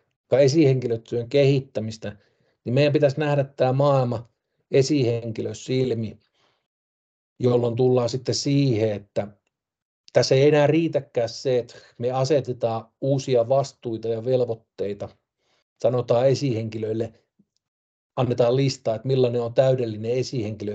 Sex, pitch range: male, 115-140 Hz